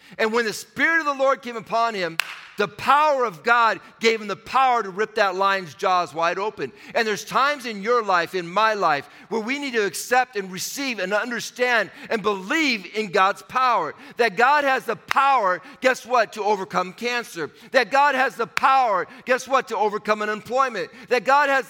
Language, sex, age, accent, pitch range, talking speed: English, male, 50-69, American, 170-255 Hz, 195 wpm